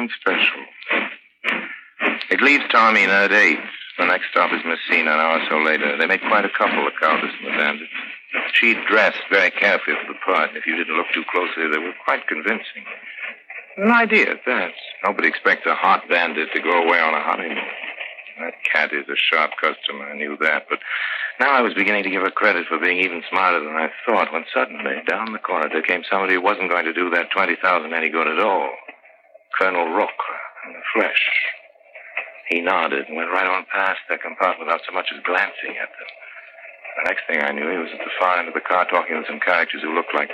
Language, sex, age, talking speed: English, male, 60-79, 215 wpm